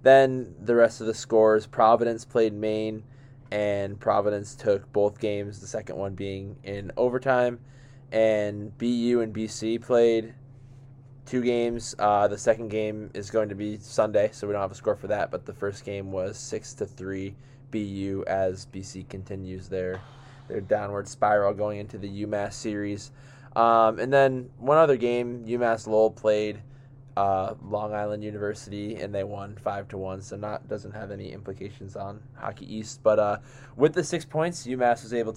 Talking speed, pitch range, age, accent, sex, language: 175 wpm, 100-125 Hz, 20-39, American, male, English